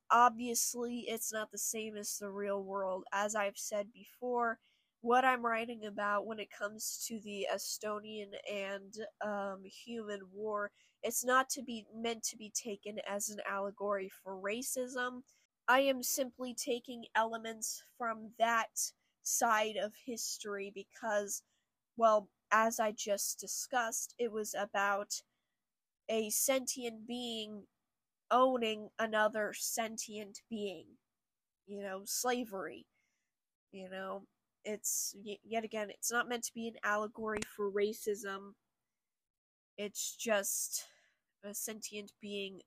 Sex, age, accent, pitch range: female, 10-29, American, 200-230 Hz